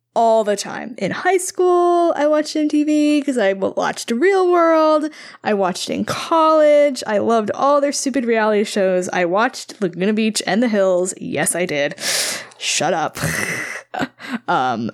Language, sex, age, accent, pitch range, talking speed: English, female, 10-29, American, 185-275 Hz, 155 wpm